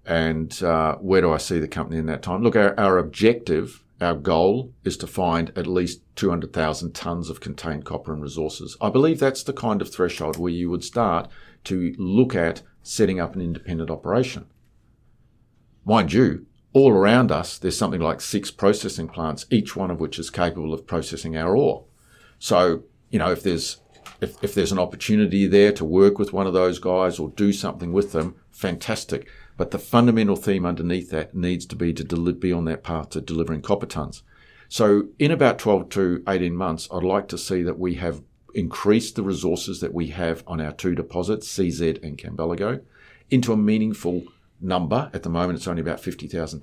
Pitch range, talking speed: 80-100 Hz, 190 wpm